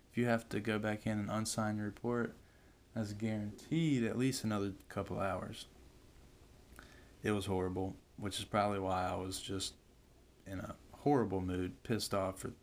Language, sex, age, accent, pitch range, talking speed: English, male, 20-39, American, 95-120 Hz, 160 wpm